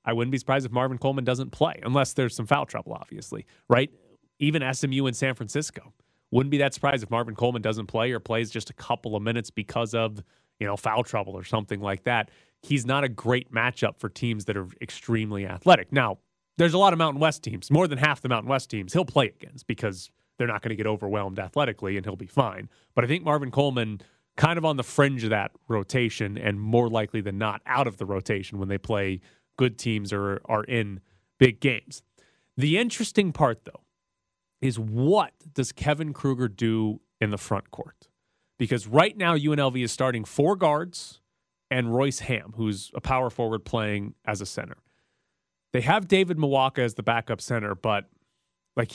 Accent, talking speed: American, 200 wpm